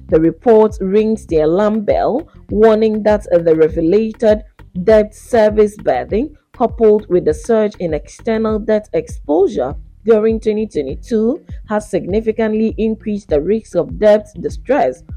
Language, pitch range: English, 195-225 Hz